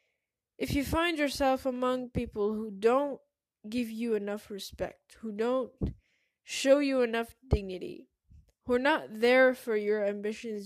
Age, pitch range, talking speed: 10-29, 220-270 Hz, 140 wpm